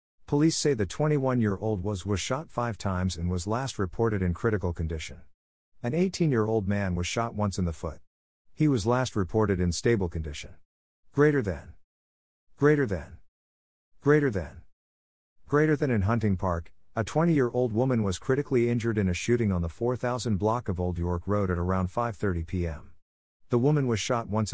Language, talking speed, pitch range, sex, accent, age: English, 170 wpm, 85-120 Hz, male, American, 50-69